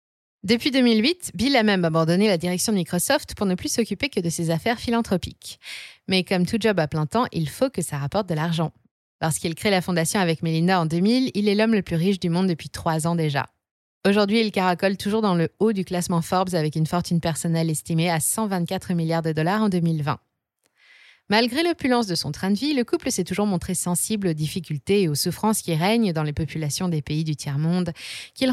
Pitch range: 165-220 Hz